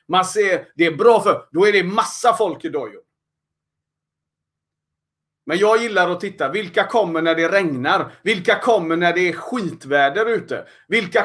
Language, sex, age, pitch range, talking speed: Swedish, male, 30-49, 175-240 Hz, 165 wpm